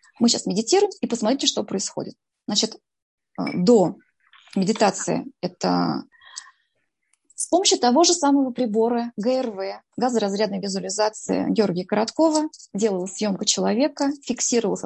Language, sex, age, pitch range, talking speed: Russian, female, 20-39, 210-280 Hz, 105 wpm